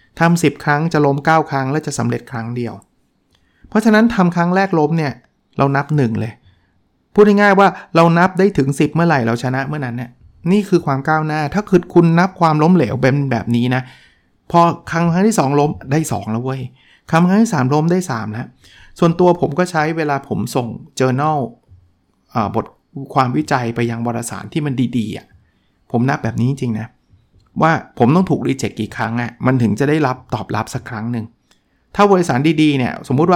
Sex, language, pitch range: male, Thai, 120-155 Hz